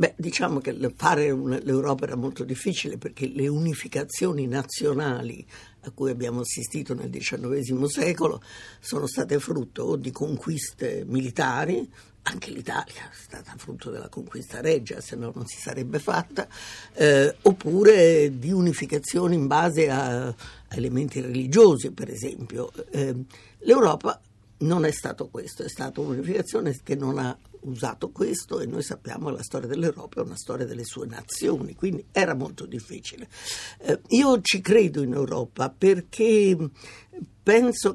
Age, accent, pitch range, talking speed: 60-79, native, 130-170 Hz, 140 wpm